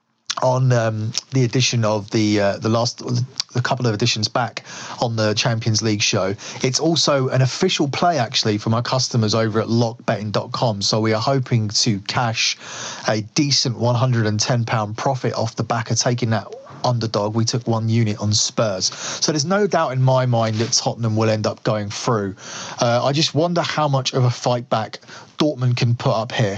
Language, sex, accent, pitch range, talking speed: English, male, British, 115-140 Hz, 185 wpm